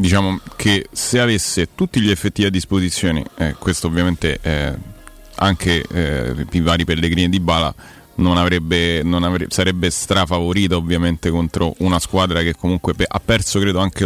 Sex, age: male, 30-49